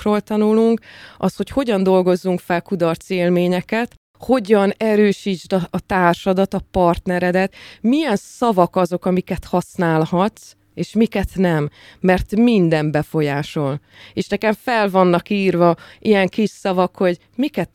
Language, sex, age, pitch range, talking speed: Hungarian, female, 20-39, 175-200 Hz, 115 wpm